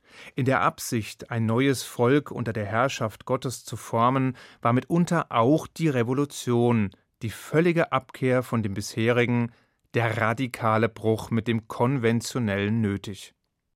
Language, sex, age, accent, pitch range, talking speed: German, male, 30-49, German, 115-140 Hz, 130 wpm